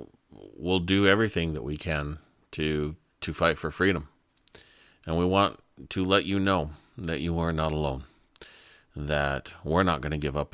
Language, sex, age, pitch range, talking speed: English, male, 40-59, 75-95 Hz, 170 wpm